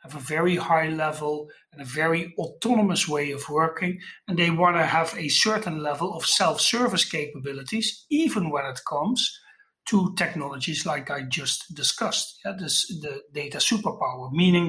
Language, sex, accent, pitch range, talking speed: English, male, Dutch, 150-190 Hz, 155 wpm